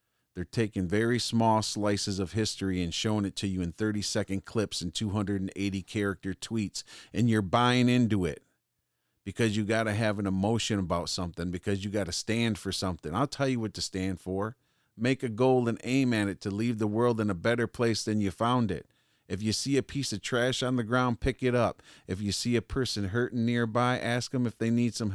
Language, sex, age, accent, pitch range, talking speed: English, male, 40-59, American, 95-120 Hz, 215 wpm